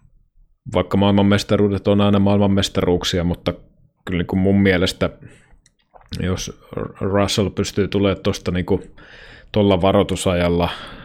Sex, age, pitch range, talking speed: male, 20-39, 90-100 Hz, 90 wpm